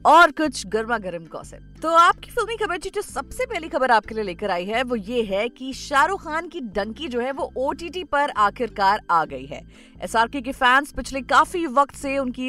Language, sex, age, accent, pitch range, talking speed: Hindi, female, 30-49, native, 230-315 Hz, 180 wpm